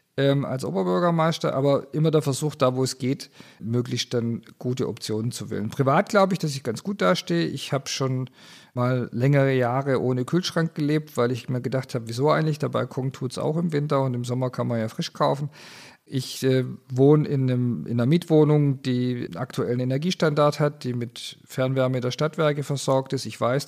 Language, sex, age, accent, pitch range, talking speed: German, male, 50-69, German, 120-150 Hz, 195 wpm